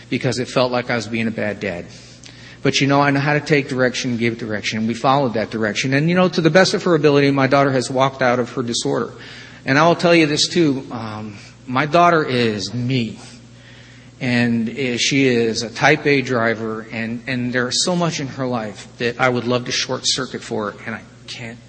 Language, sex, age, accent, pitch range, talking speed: English, male, 40-59, American, 120-150 Hz, 225 wpm